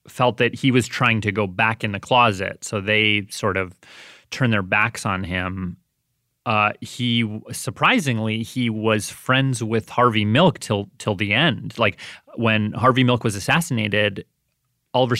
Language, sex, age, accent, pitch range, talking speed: English, male, 30-49, American, 105-125 Hz, 160 wpm